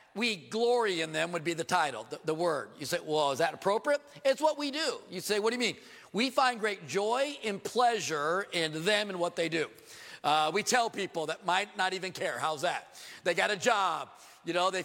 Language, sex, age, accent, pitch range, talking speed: English, male, 40-59, American, 170-230 Hz, 230 wpm